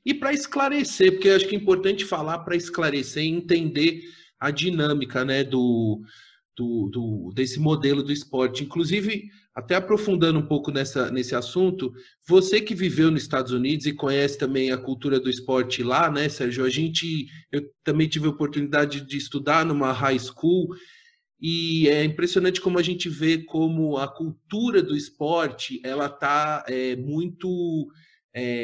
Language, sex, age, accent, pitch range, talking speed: Portuguese, male, 30-49, Brazilian, 130-175 Hz, 160 wpm